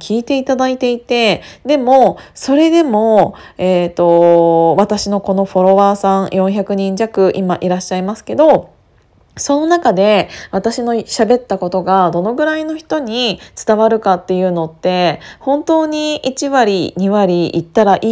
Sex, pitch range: female, 185-250 Hz